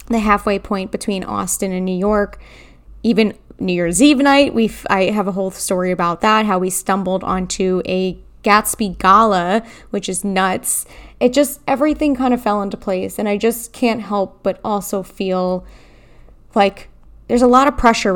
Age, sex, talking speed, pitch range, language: 20-39, female, 175 wpm, 190-220 Hz, English